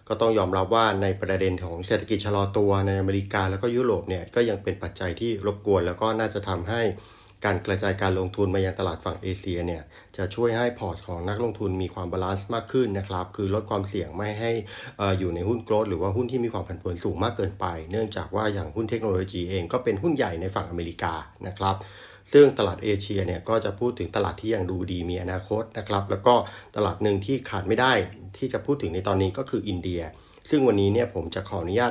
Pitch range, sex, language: 95-110 Hz, male, Thai